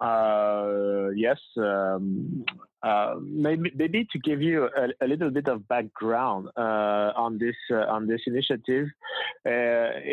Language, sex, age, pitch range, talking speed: English, male, 30-49, 110-130 Hz, 135 wpm